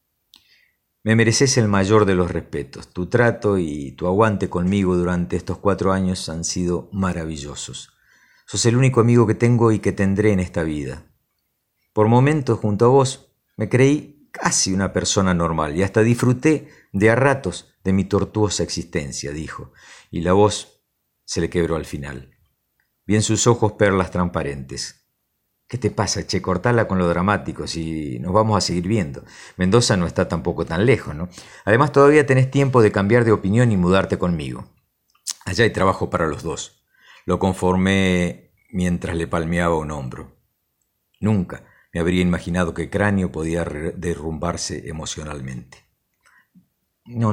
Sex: male